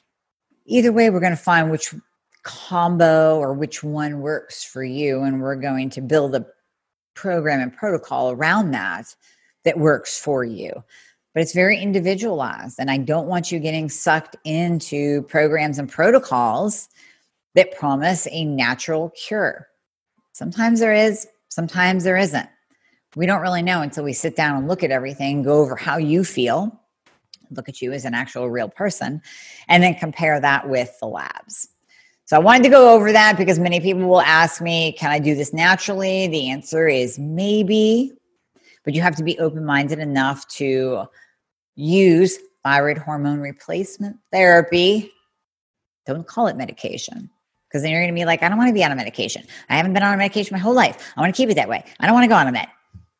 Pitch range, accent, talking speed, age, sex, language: 145-195 Hz, American, 185 wpm, 40-59, female, English